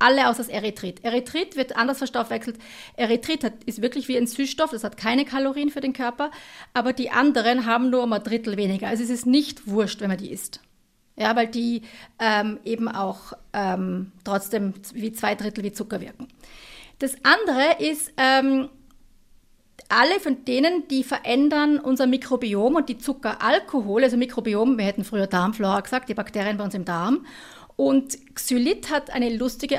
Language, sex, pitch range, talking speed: German, female, 225-275 Hz, 175 wpm